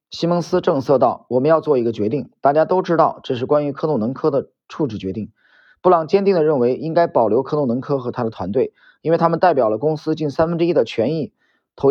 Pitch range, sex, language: 130-185 Hz, male, Chinese